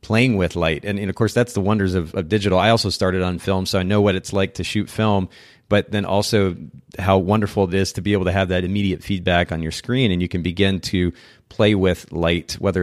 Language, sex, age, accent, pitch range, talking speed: English, male, 30-49, American, 90-105 Hz, 255 wpm